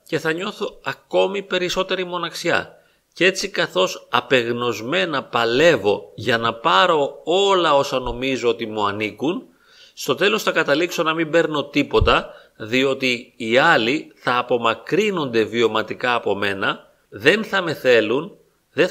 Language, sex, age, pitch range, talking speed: Greek, male, 40-59, 120-185 Hz, 130 wpm